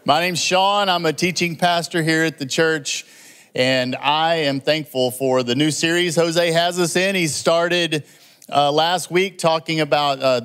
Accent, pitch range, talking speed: American, 130-155 Hz, 180 wpm